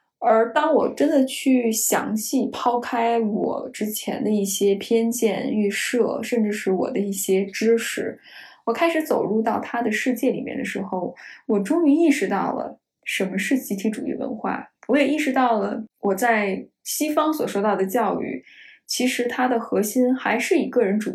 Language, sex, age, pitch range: Chinese, female, 10-29, 205-265 Hz